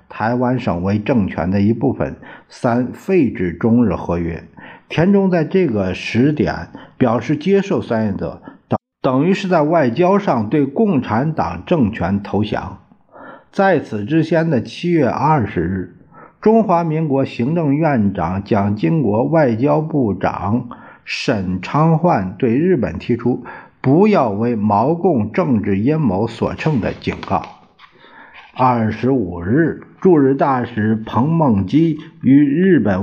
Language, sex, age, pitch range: Chinese, male, 50-69, 100-155 Hz